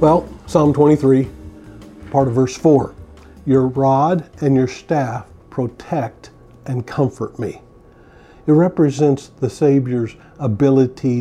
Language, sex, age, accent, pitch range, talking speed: English, male, 50-69, American, 120-150 Hz, 110 wpm